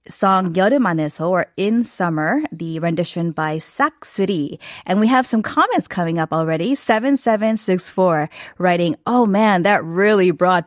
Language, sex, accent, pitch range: Korean, female, American, 165-200 Hz